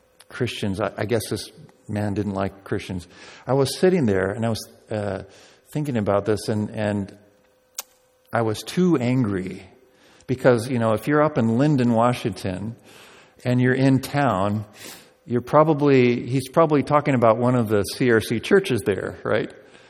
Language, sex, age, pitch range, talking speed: English, male, 50-69, 105-130 Hz, 155 wpm